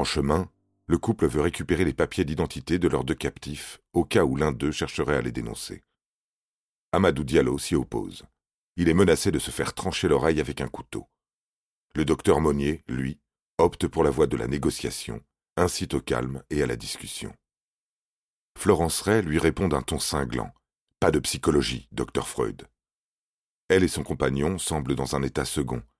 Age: 40-59